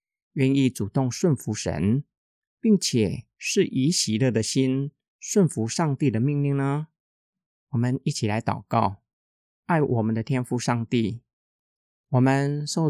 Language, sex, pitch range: Chinese, male, 110-145 Hz